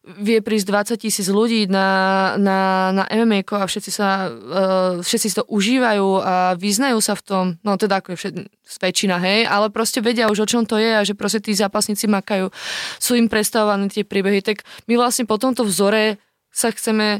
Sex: female